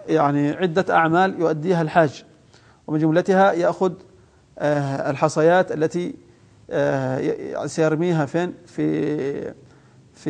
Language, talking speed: Arabic, 95 wpm